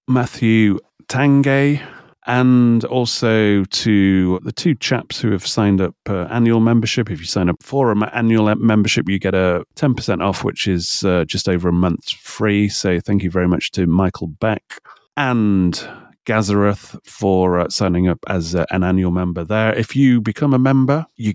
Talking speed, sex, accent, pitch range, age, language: 175 wpm, male, British, 95-120 Hz, 30-49, English